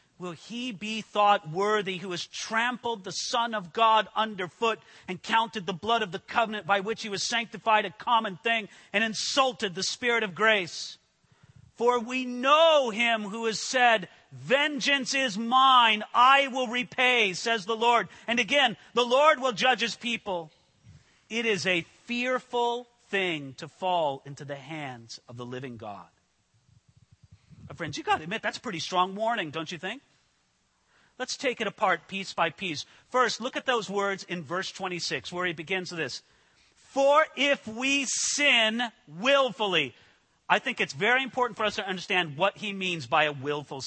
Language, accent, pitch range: English, American, 180-245 Hz